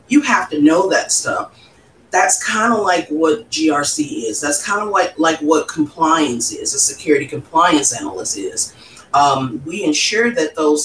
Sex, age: female, 40-59